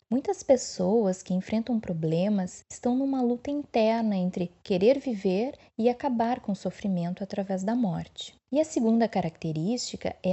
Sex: female